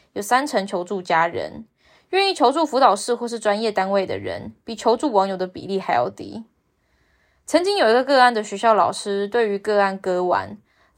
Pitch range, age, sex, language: 195-260 Hz, 10-29, female, Chinese